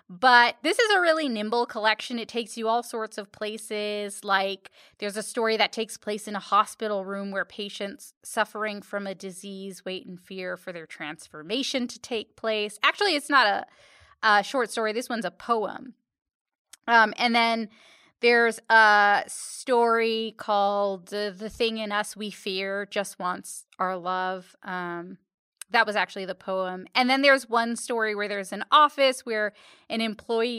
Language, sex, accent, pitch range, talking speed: English, female, American, 195-235 Hz, 170 wpm